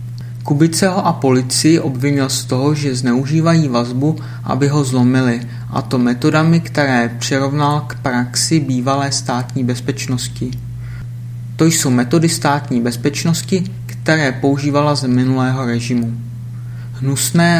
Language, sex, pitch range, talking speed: Czech, male, 120-140 Hz, 115 wpm